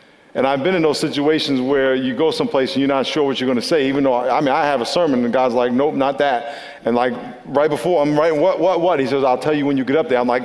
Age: 50-69